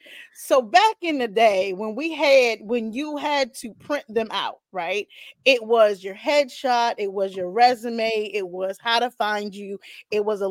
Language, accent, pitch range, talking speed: English, American, 225-285 Hz, 190 wpm